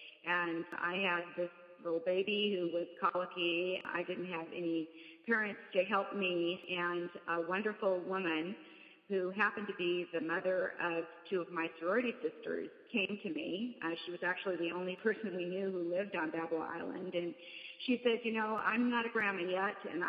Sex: female